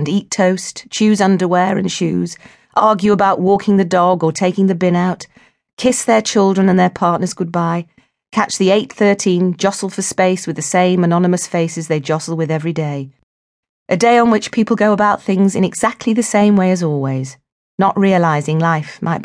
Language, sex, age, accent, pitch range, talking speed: English, female, 40-59, British, 155-195 Hz, 185 wpm